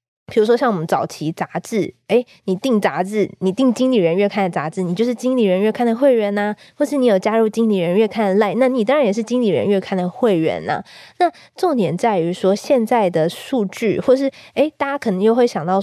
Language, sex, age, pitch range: Chinese, female, 20-39, 185-240 Hz